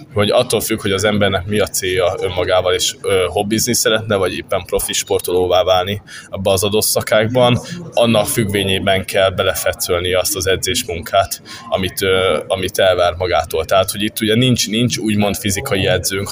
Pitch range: 95-120 Hz